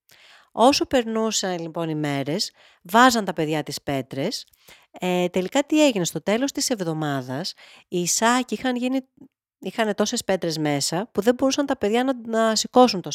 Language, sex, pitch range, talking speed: Greek, female, 150-210 Hz, 160 wpm